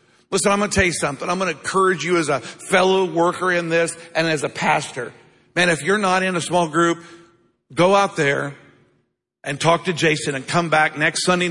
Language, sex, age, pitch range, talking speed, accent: English, male, 50-69, 155-185 Hz, 220 wpm, American